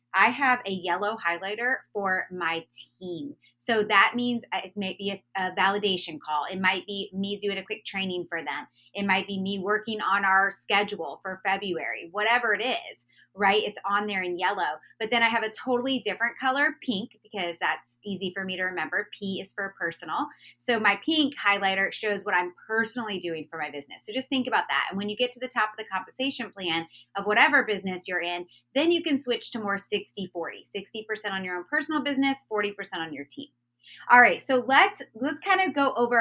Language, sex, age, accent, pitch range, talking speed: English, female, 30-49, American, 180-235 Hz, 210 wpm